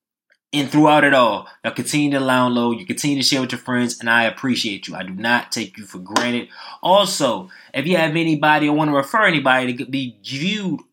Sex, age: male, 20-39